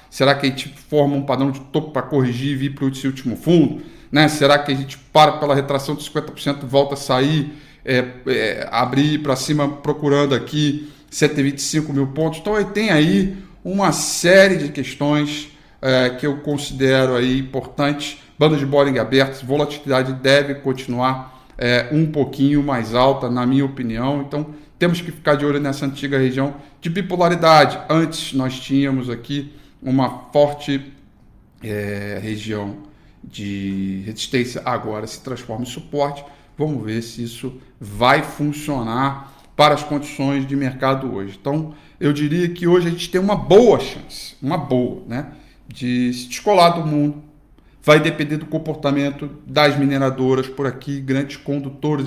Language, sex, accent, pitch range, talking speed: Portuguese, male, Brazilian, 130-150 Hz, 155 wpm